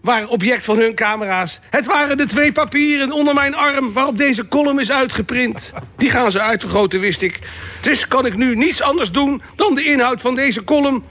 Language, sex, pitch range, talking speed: Dutch, male, 190-250 Hz, 200 wpm